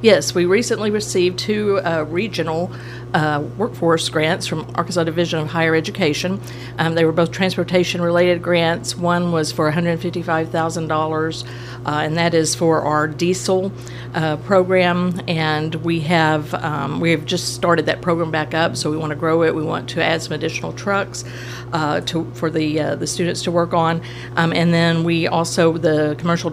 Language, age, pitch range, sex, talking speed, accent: English, 50-69, 150-175 Hz, female, 175 wpm, American